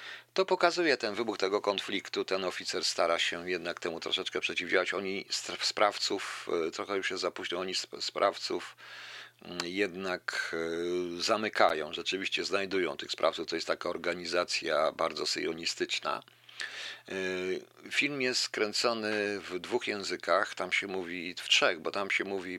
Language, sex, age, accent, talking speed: Polish, male, 50-69, native, 130 wpm